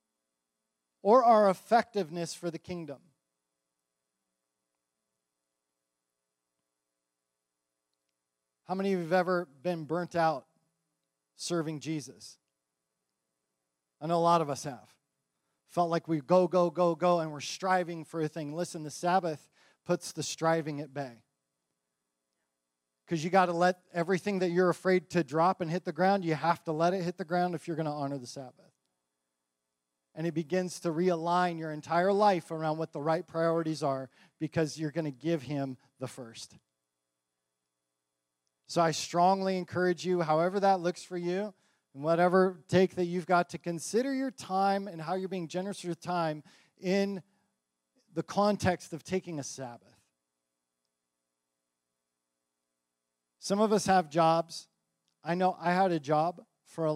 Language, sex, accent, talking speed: English, male, American, 150 wpm